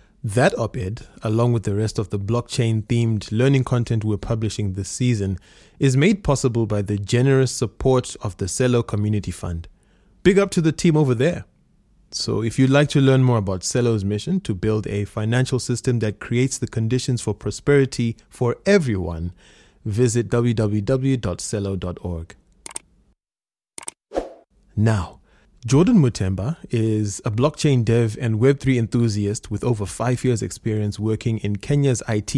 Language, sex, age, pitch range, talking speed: English, male, 20-39, 105-130 Hz, 145 wpm